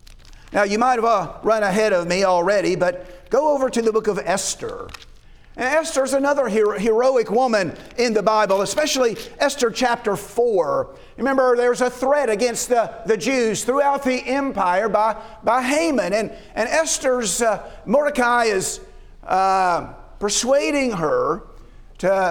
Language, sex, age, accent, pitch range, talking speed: English, male, 50-69, American, 200-255 Hz, 145 wpm